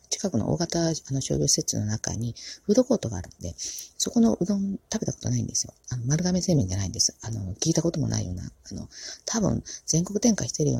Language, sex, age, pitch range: Japanese, female, 40-59, 110-150 Hz